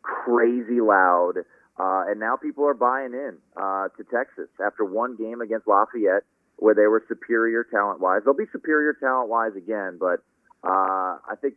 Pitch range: 100-140 Hz